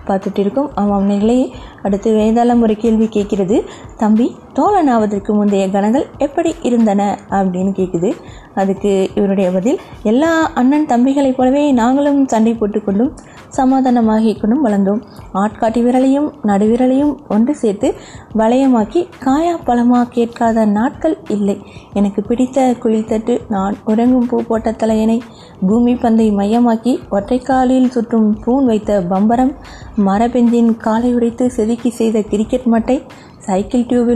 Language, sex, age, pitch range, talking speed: Tamil, female, 20-39, 210-260 Hz, 115 wpm